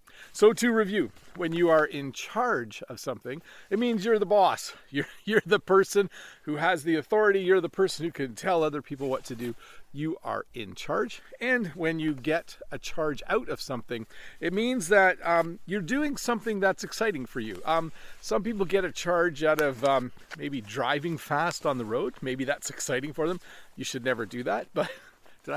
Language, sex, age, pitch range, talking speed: English, male, 40-59, 140-190 Hz, 200 wpm